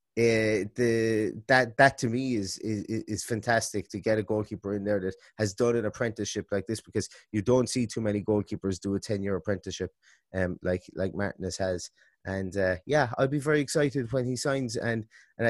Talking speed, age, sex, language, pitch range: 200 wpm, 20-39, male, English, 105-135 Hz